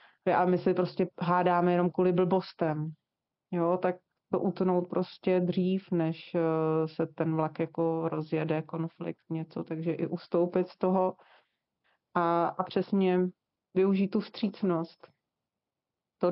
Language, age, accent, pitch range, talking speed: Czech, 30-49, native, 170-185 Hz, 125 wpm